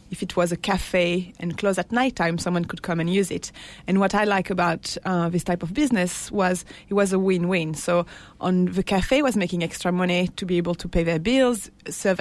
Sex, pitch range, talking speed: female, 180-215 Hz, 230 wpm